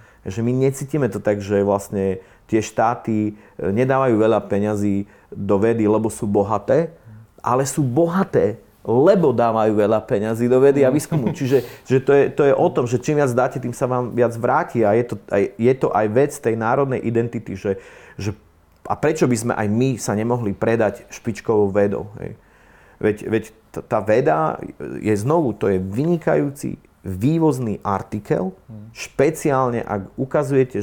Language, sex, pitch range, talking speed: Slovak, male, 105-130 Hz, 165 wpm